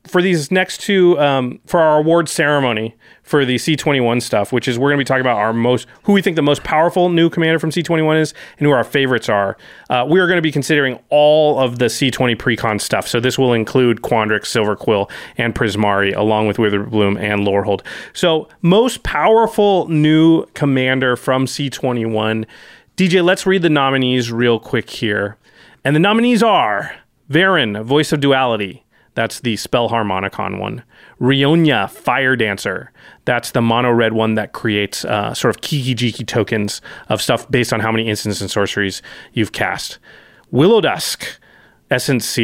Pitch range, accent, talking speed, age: 110-150 Hz, American, 170 wpm, 30-49